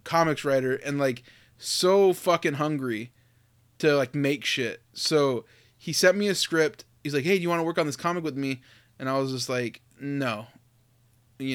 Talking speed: 190 wpm